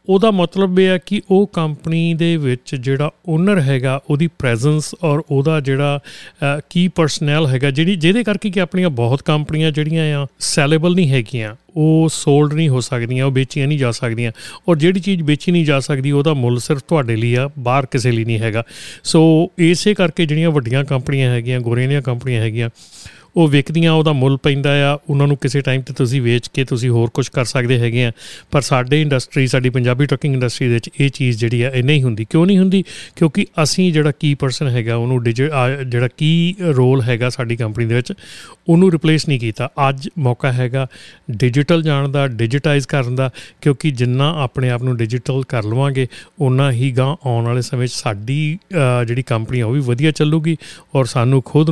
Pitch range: 125-155 Hz